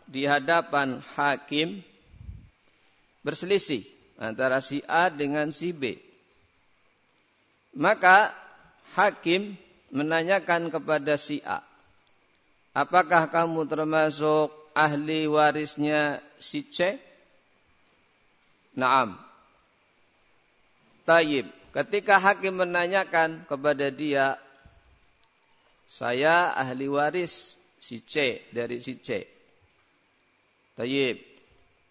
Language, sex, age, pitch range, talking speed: Indonesian, male, 50-69, 145-185 Hz, 75 wpm